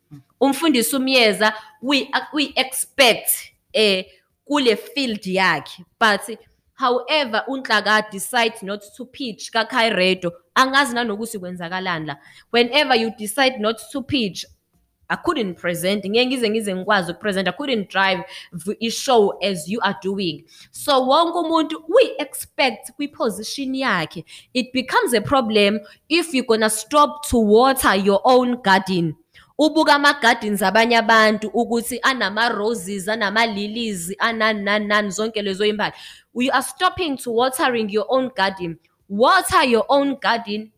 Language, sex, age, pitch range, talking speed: English, female, 20-39, 195-260 Hz, 110 wpm